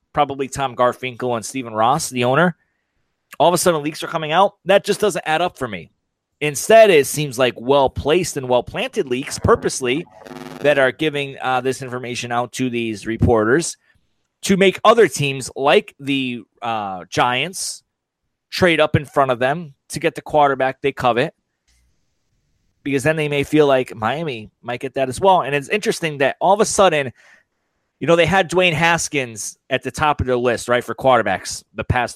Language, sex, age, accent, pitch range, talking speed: English, male, 30-49, American, 125-155 Hz, 185 wpm